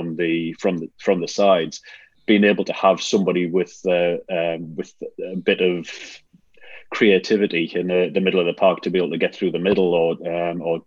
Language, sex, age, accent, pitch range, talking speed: English, male, 30-49, British, 85-95 Hz, 205 wpm